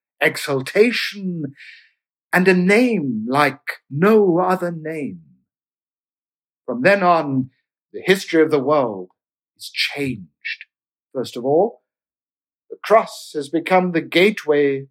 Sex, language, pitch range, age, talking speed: male, English, 135-190 Hz, 60-79, 110 wpm